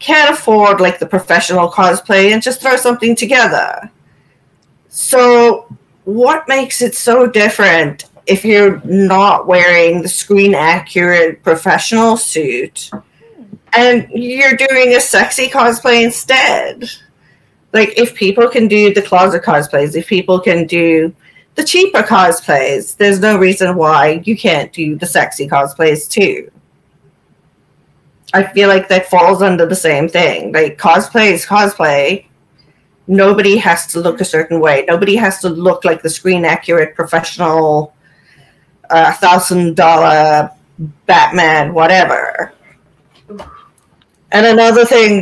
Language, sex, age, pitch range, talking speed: English, female, 40-59, 165-225 Hz, 125 wpm